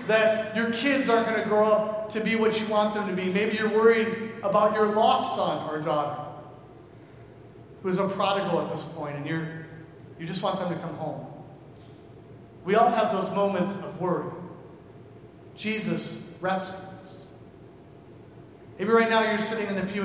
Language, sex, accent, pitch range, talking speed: English, male, American, 155-195 Hz, 175 wpm